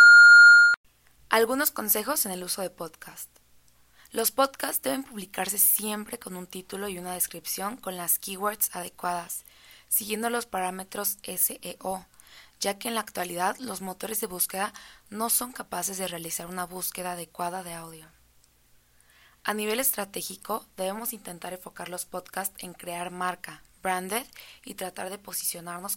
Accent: Mexican